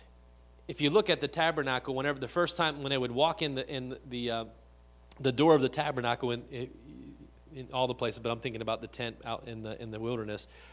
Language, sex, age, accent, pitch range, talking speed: English, male, 30-49, American, 115-150 Hz, 230 wpm